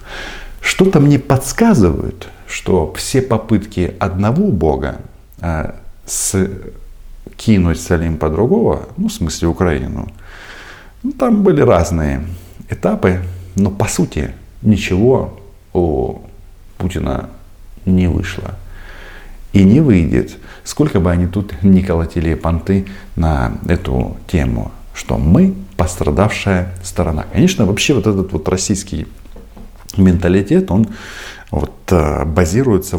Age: 50-69